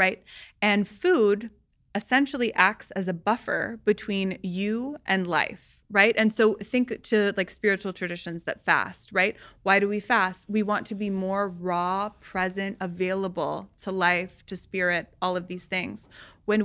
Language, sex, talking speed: English, female, 160 wpm